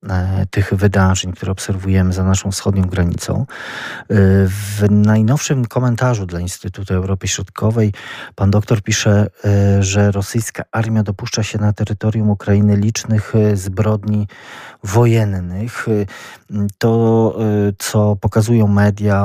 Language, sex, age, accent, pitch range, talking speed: Polish, male, 40-59, native, 95-110 Hz, 105 wpm